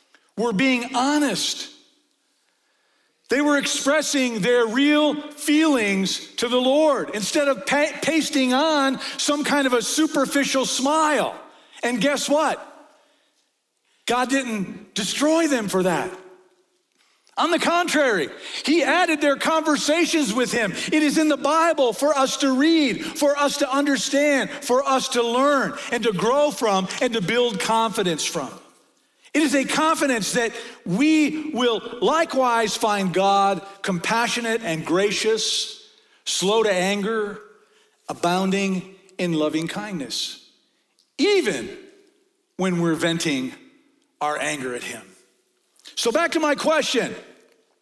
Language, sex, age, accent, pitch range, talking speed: English, male, 50-69, American, 225-300 Hz, 125 wpm